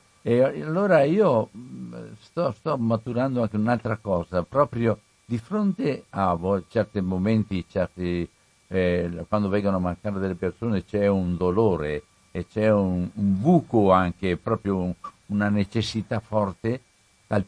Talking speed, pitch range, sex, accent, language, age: 125 wpm, 90-115 Hz, male, native, Italian, 60-79